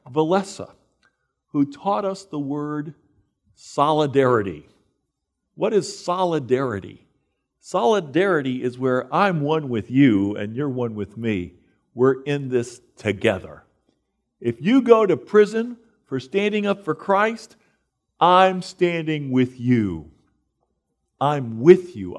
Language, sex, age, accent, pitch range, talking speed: English, male, 50-69, American, 130-200 Hz, 115 wpm